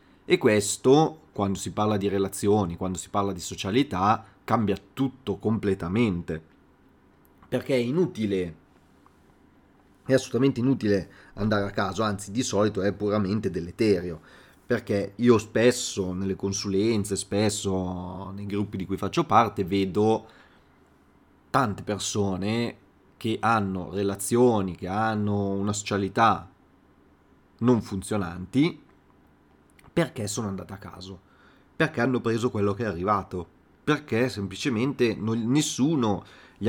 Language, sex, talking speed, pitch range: Italian, male, 115 wpm, 95-110 Hz